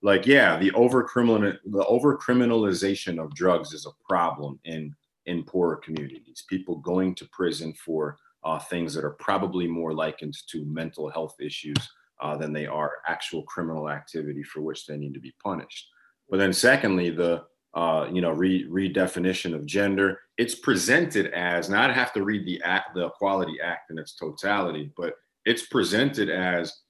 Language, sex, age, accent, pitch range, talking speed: English, male, 30-49, American, 85-110 Hz, 170 wpm